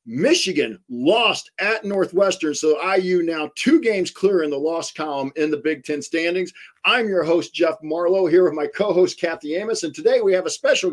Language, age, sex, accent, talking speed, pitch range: English, 50-69, male, American, 200 wpm, 150-185 Hz